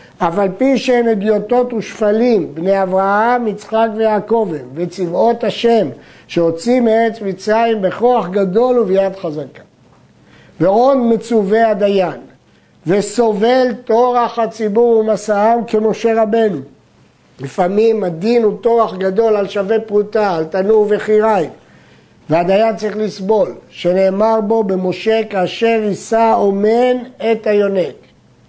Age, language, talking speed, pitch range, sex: 50-69, Hebrew, 105 wpm, 195-225 Hz, male